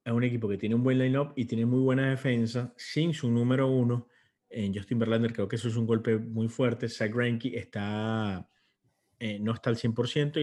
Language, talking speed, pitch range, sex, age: English, 205 wpm, 105-125 Hz, male, 30-49